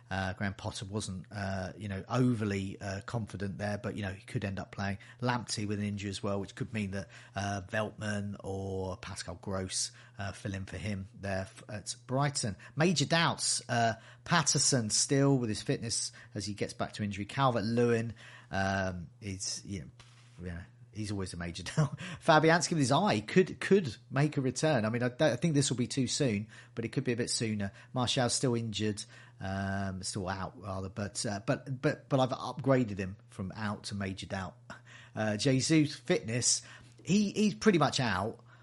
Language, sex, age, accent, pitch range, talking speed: English, male, 40-59, British, 100-130 Hz, 190 wpm